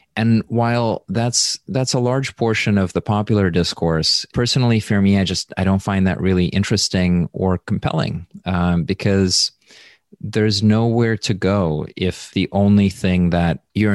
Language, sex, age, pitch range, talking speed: English, male, 30-49, 85-105 Hz, 155 wpm